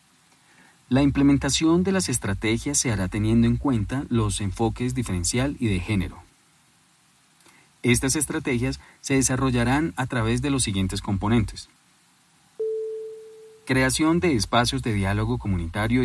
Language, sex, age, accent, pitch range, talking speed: Spanish, male, 40-59, Colombian, 105-135 Hz, 120 wpm